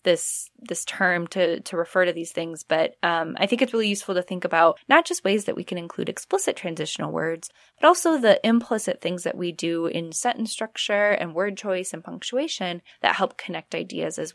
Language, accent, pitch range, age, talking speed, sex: English, American, 170-215 Hz, 20-39, 210 wpm, female